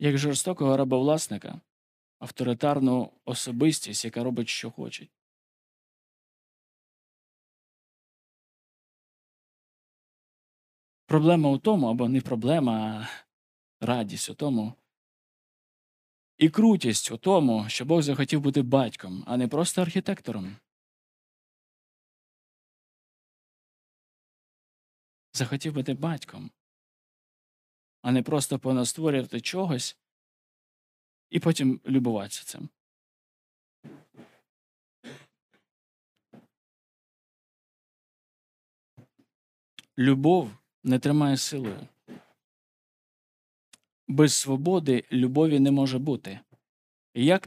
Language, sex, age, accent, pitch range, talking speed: Ukrainian, male, 20-39, native, 120-155 Hz, 70 wpm